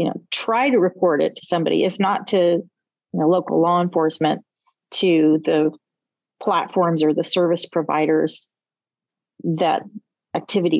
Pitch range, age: 160-185 Hz, 40-59